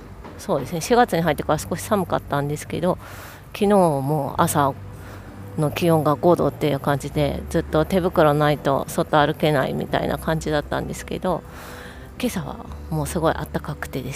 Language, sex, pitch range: Japanese, female, 125-170 Hz